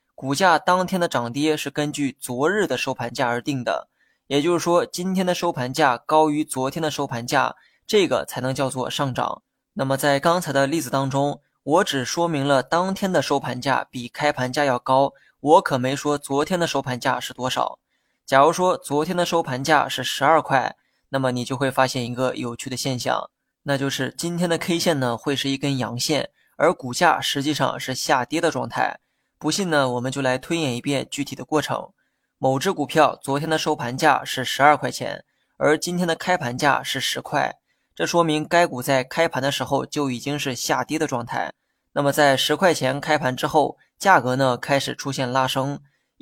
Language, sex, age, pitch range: Chinese, male, 20-39, 130-160 Hz